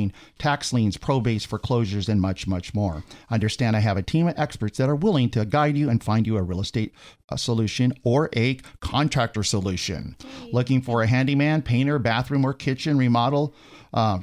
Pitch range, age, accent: 105-140 Hz, 50-69, American